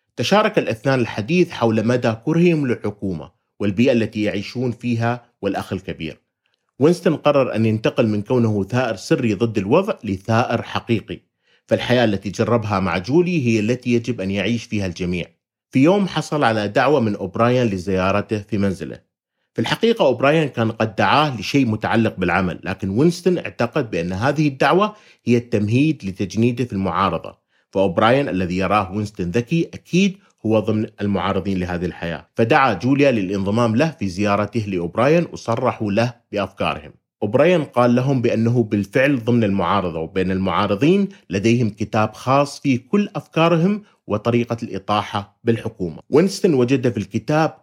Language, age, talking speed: Arabic, 30-49, 140 wpm